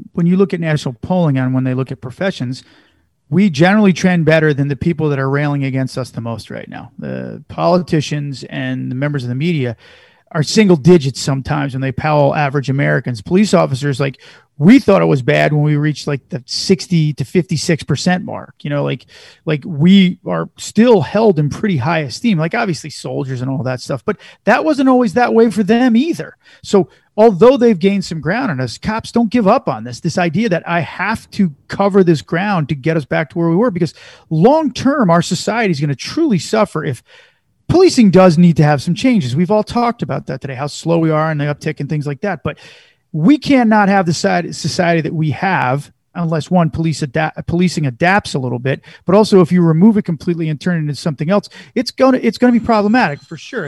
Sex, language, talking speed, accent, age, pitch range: male, English, 215 wpm, American, 40-59, 145-195 Hz